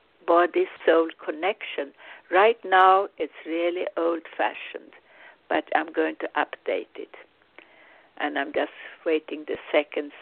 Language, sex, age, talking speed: English, female, 60-79, 110 wpm